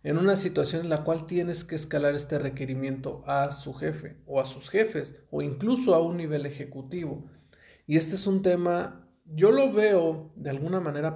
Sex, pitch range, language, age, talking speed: male, 140-175 Hz, Spanish, 40-59, 190 wpm